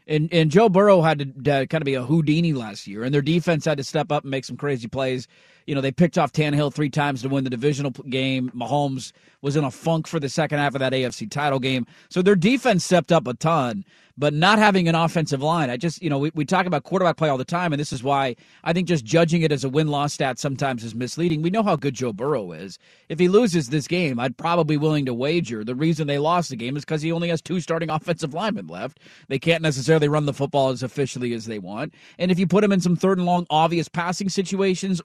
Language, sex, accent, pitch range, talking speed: English, male, American, 140-170 Hz, 260 wpm